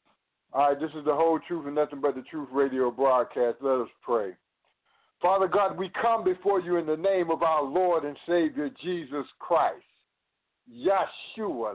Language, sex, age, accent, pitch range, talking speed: English, male, 60-79, American, 155-215 Hz, 175 wpm